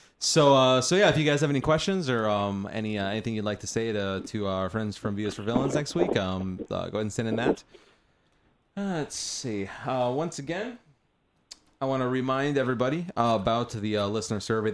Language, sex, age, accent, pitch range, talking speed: English, male, 30-49, American, 105-130 Hz, 220 wpm